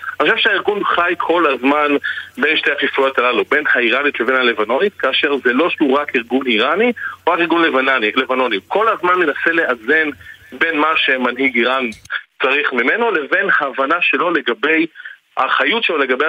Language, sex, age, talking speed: Hebrew, male, 40-59, 150 wpm